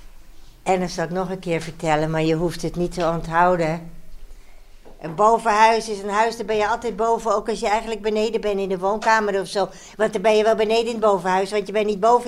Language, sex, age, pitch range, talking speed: Dutch, female, 60-79, 180-225 Hz, 235 wpm